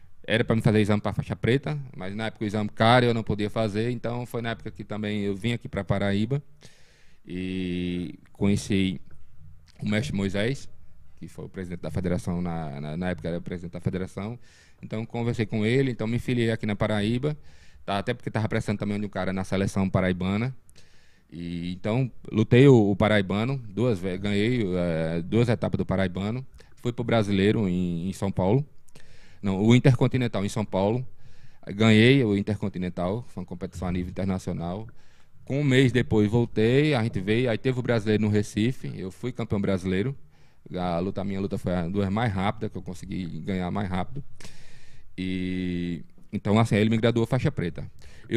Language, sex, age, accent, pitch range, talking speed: Portuguese, male, 20-39, Brazilian, 95-120 Hz, 185 wpm